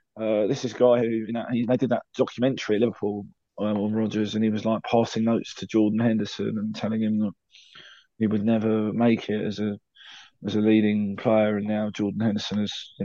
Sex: male